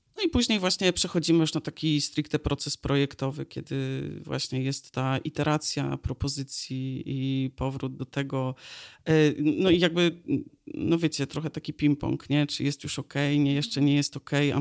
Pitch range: 145-165 Hz